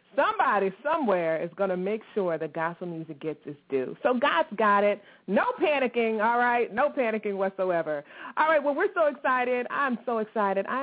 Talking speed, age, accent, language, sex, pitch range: 190 wpm, 30-49, American, English, female, 175-230 Hz